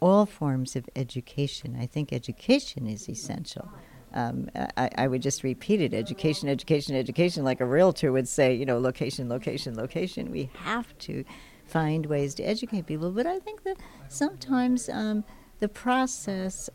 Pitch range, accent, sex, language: 130-185 Hz, American, female, English